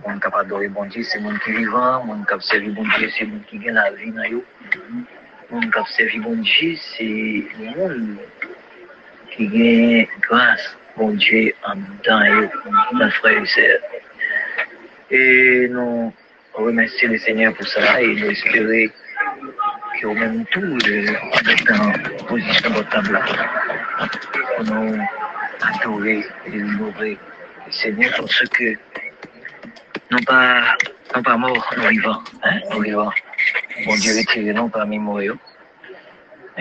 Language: English